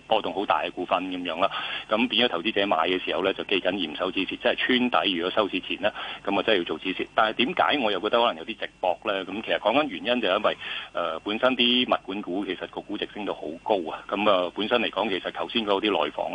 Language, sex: Chinese, male